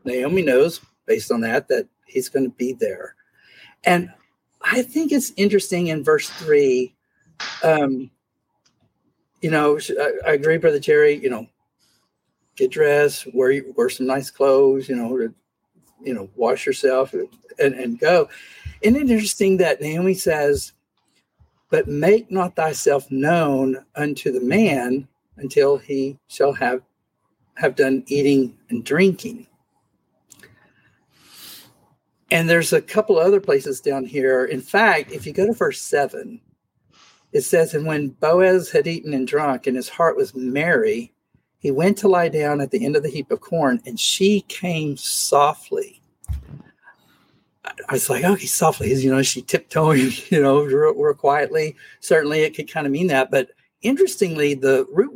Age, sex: 50-69, male